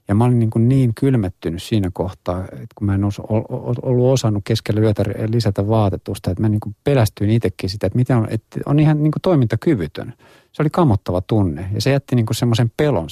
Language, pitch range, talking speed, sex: Finnish, 95-115 Hz, 205 wpm, male